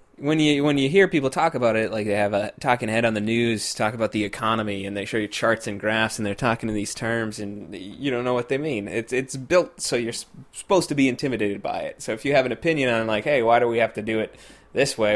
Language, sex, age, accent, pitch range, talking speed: English, male, 20-39, American, 105-125 Hz, 280 wpm